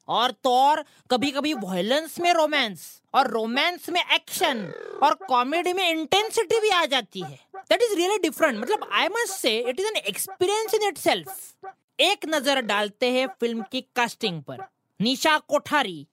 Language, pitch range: Hindi, 240-370 Hz